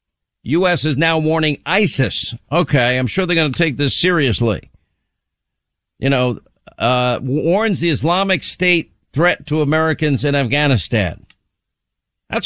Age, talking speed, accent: 50-69, 130 wpm, American